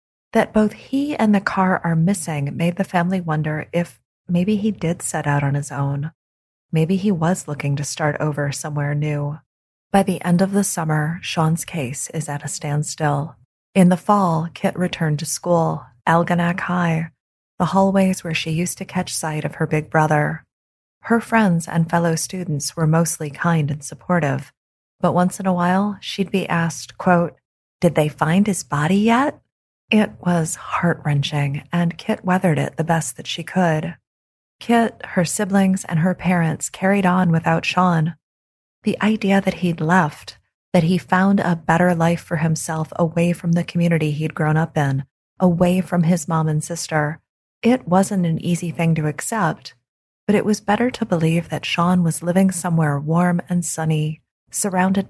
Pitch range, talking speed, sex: 155-185 Hz, 175 wpm, female